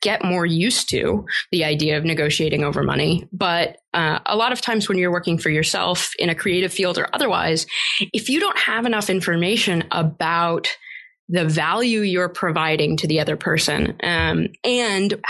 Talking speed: 175 wpm